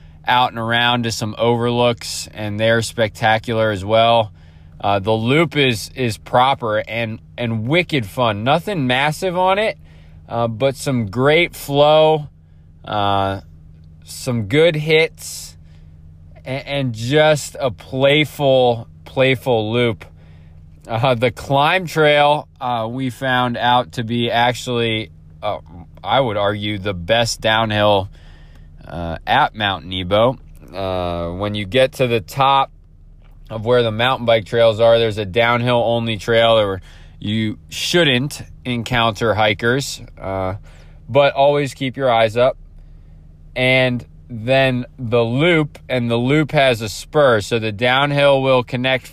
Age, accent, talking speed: 20-39, American, 130 wpm